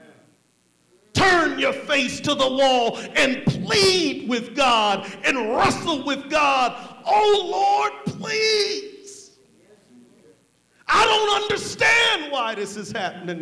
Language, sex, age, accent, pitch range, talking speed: English, male, 50-69, American, 170-275 Hz, 105 wpm